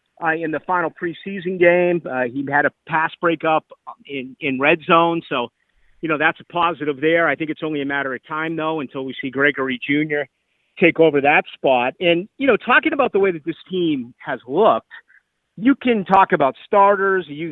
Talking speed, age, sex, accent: 200 wpm, 50-69, male, American